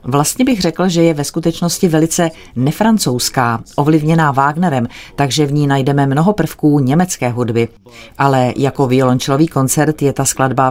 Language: Czech